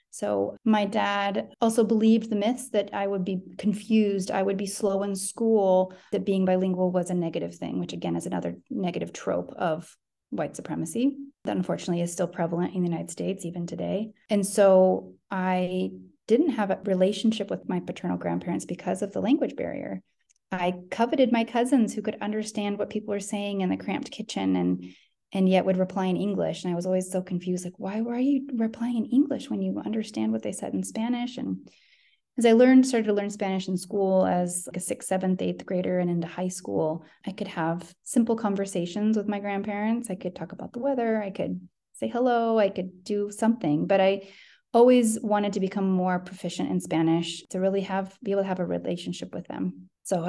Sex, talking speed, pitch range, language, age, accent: female, 200 wpm, 175-215 Hz, English, 30-49, American